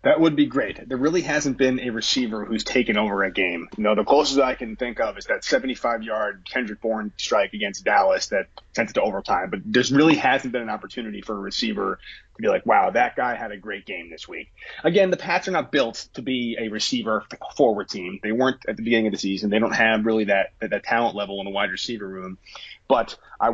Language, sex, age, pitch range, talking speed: English, male, 30-49, 105-130 Hz, 230 wpm